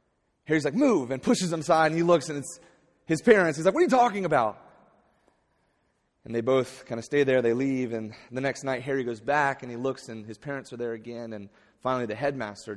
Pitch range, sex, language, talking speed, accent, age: 110-160 Hz, male, English, 235 wpm, American, 30-49